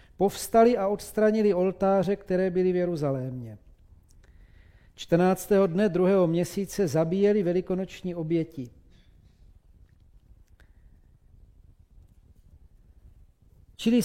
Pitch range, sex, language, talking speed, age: 130-200 Hz, male, Czech, 70 wpm, 40-59